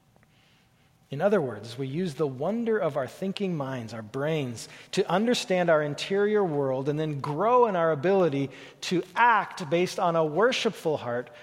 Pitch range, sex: 145-205 Hz, male